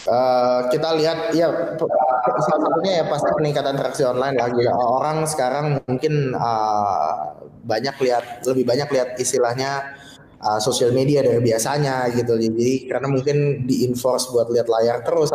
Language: Indonesian